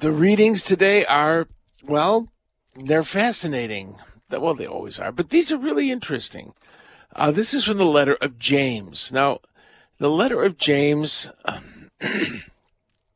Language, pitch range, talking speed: English, 125-175 Hz, 135 wpm